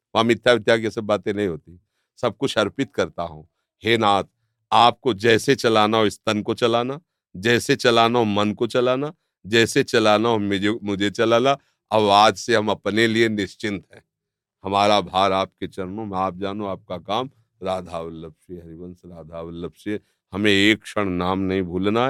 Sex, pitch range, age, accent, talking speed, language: male, 95-120 Hz, 50-69, native, 165 wpm, Hindi